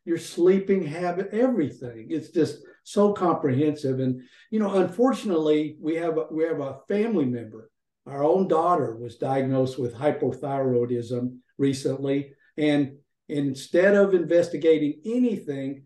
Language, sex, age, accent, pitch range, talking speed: English, male, 50-69, American, 130-165 Hz, 115 wpm